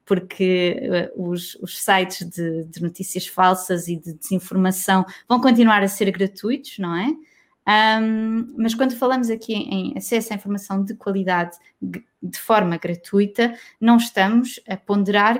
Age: 20-39